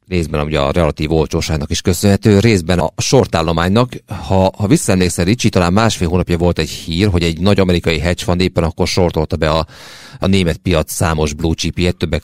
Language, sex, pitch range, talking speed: Hungarian, male, 85-105 Hz, 185 wpm